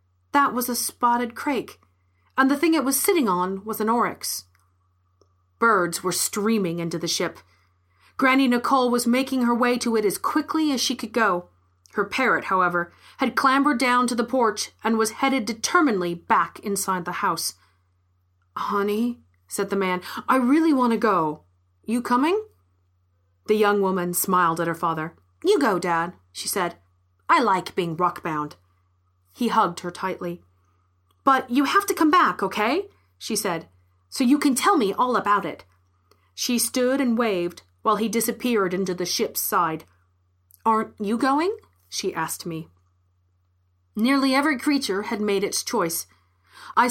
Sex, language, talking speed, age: female, English, 160 wpm, 30-49